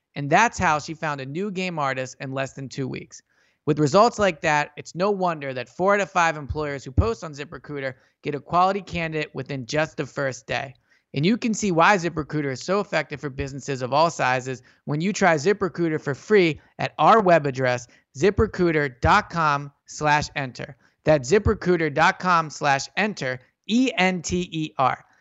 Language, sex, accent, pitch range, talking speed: English, male, American, 140-185 Hz, 170 wpm